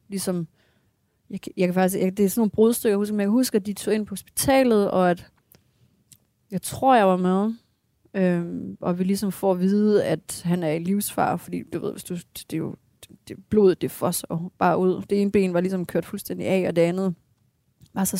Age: 30-49